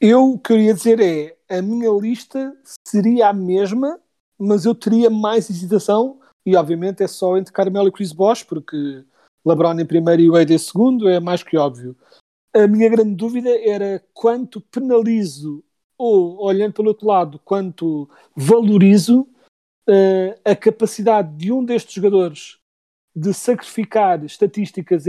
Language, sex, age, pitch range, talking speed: Portuguese, male, 40-59, 180-220 Hz, 145 wpm